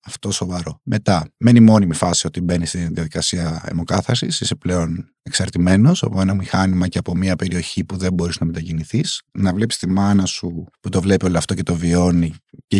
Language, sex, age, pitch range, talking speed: Greek, male, 30-49, 90-110 Hz, 190 wpm